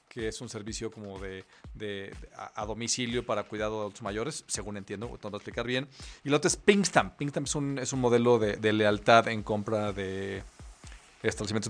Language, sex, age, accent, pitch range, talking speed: Spanish, male, 40-59, Mexican, 110-135 Hz, 200 wpm